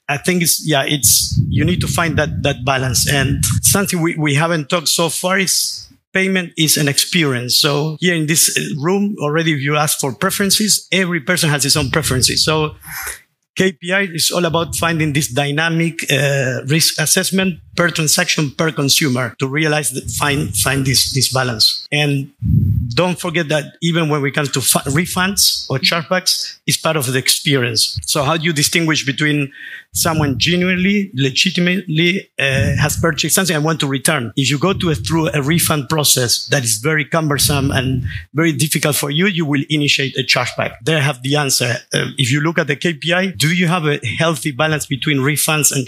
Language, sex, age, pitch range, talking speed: English, male, 50-69, 135-170 Hz, 185 wpm